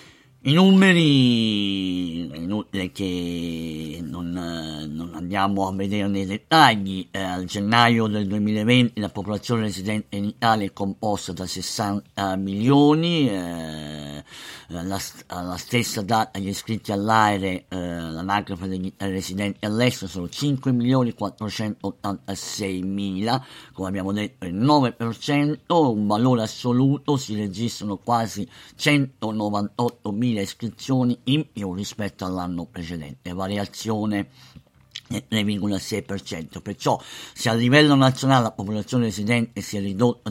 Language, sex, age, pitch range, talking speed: Italian, male, 50-69, 95-115 Hz, 105 wpm